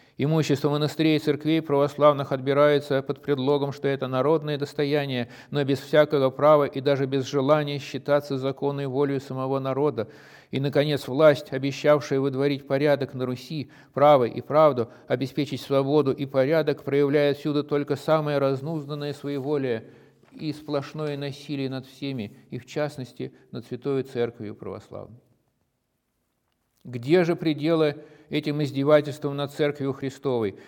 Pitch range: 135-150 Hz